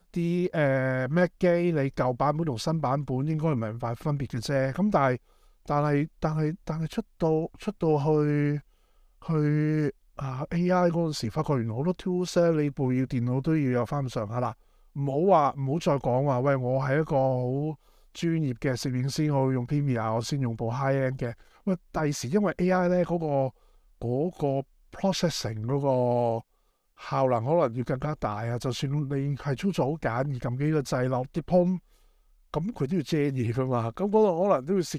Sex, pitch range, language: male, 125-160 Hz, Chinese